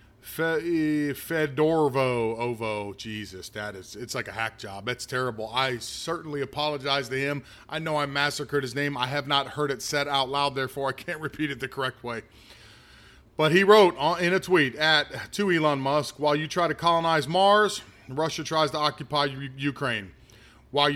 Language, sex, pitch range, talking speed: English, male, 130-175 Hz, 175 wpm